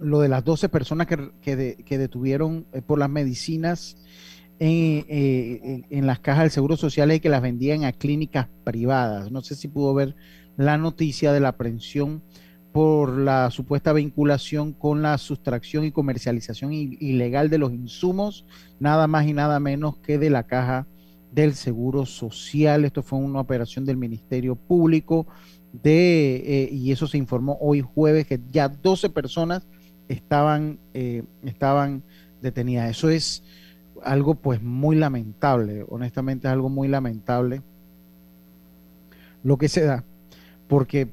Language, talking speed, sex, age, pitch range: Spanish, 150 wpm, male, 40-59, 125-150 Hz